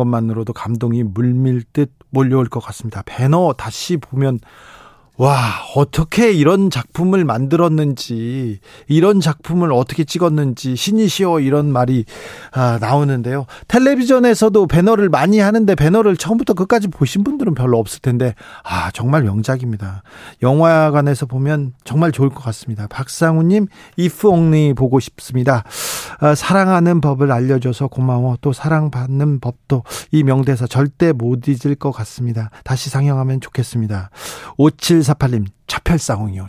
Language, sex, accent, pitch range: Korean, male, native, 125-170 Hz